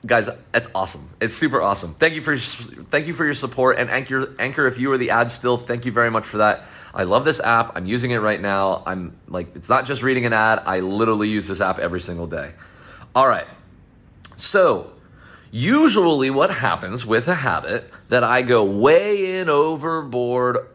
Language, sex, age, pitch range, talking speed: English, male, 30-49, 100-130 Hz, 200 wpm